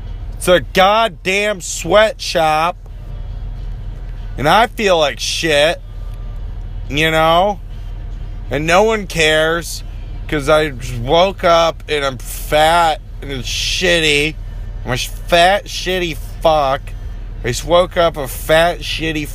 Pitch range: 105-160 Hz